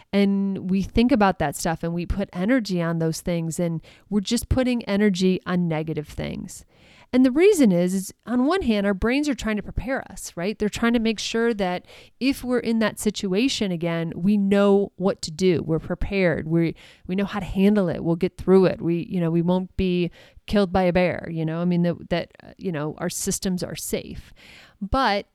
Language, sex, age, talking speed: English, female, 30-49, 215 wpm